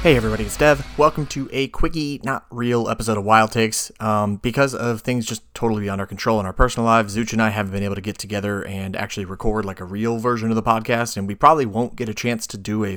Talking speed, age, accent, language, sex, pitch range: 260 wpm, 30-49, American, English, male, 95-115 Hz